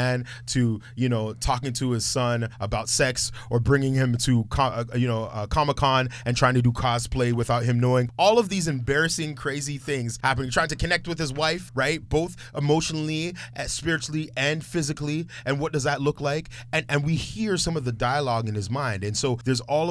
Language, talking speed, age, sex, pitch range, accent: English, 210 wpm, 30-49, male, 110-135 Hz, American